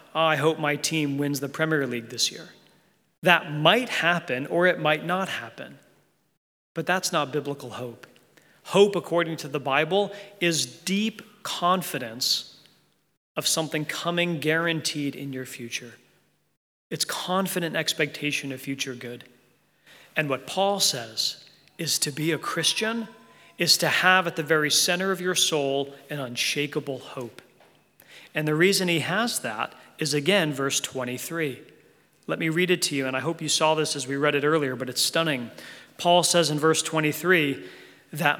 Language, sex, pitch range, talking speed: English, male, 140-180 Hz, 160 wpm